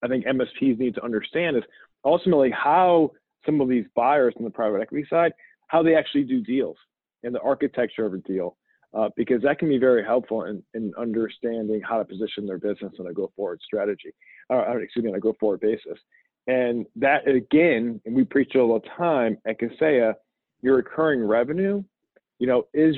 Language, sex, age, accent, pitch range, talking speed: English, male, 40-59, American, 115-155 Hz, 195 wpm